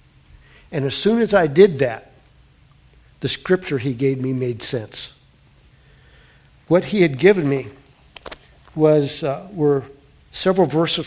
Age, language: 60-79, English